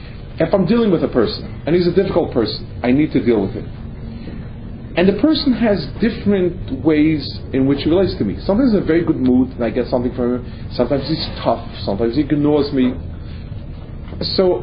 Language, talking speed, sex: English, 205 wpm, male